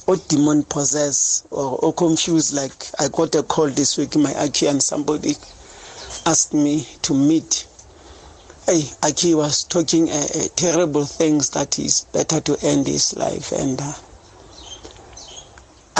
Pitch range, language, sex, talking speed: 140-165 Hz, English, male, 135 wpm